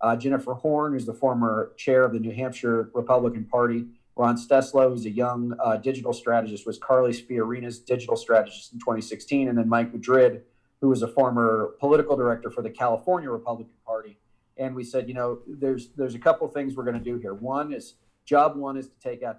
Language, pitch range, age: English, 115-135 Hz, 40-59